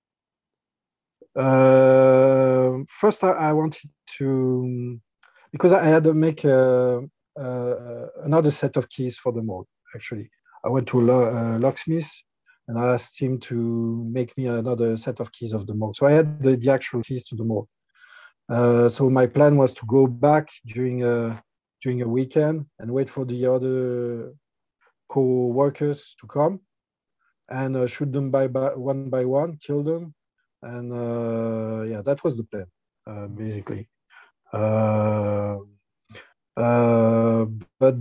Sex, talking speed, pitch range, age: male, 150 wpm, 115-140 Hz, 40-59